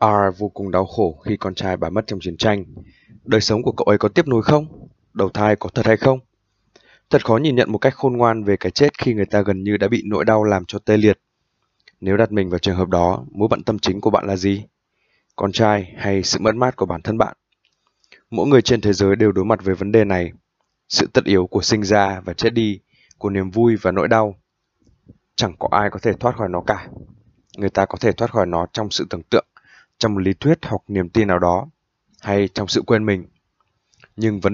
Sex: male